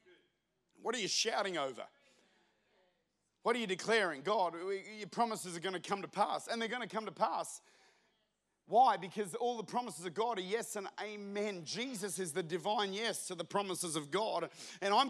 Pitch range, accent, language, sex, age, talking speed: 200-255 Hz, Australian, English, male, 40-59, 190 wpm